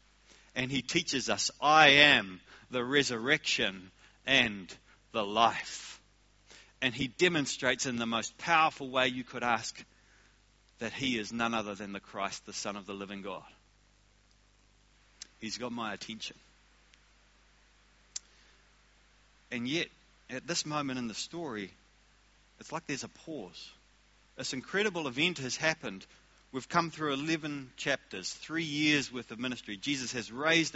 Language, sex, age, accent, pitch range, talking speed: English, male, 30-49, Australian, 115-145 Hz, 140 wpm